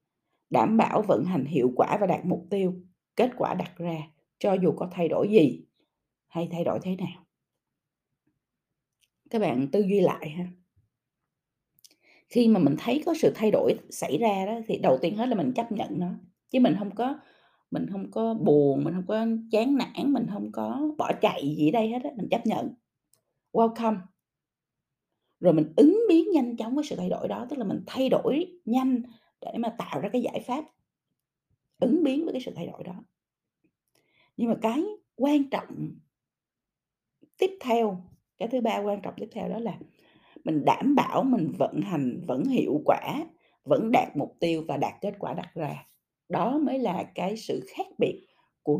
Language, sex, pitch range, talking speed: Vietnamese, female, 175-255 Hz, 185 wpm